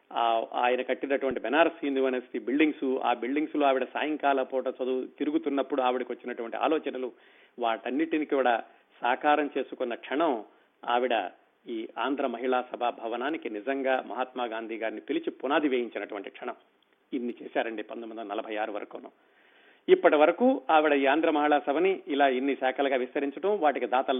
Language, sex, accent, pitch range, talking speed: Telugu, male, native, 130-165 Hz, 130 wpm